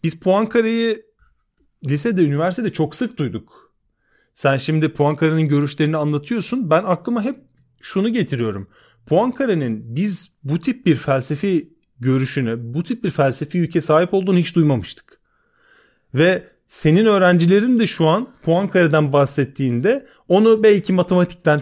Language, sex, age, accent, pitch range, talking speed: Turkish, male, 30-49, native, 140-180 Hz, 130 wpm